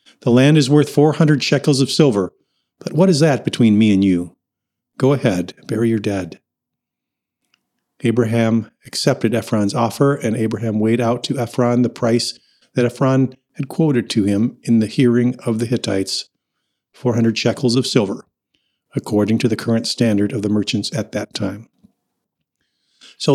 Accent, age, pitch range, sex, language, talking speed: American, 50-69, 110-130 Hz, male, English, 155 wpm